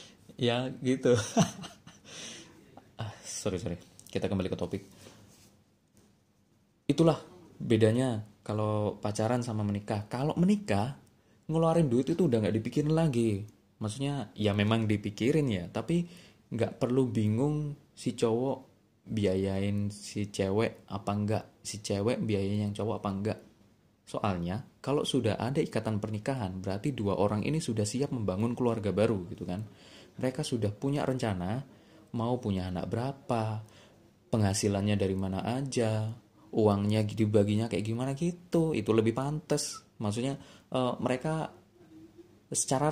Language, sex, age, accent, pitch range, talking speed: Indonesian, male, 20-39, native, 105-130 Hz, 120 wpm